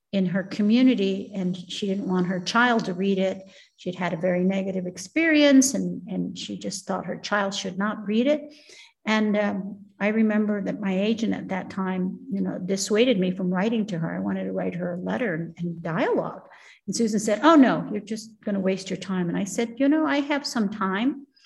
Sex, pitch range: female, 185-235 Hz